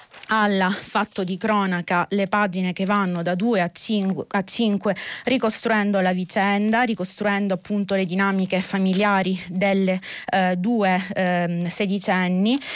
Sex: female